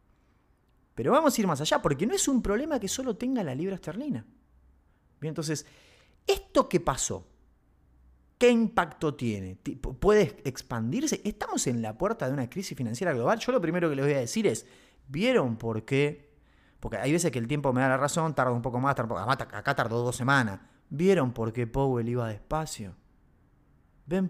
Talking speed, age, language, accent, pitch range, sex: 180 wpm, 30-49, Spanish, Argentinian, 115-165 Hz, male